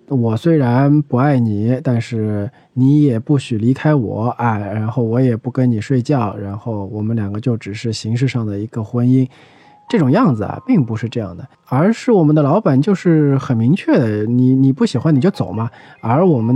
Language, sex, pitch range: Chinese, male, 115-155 Hz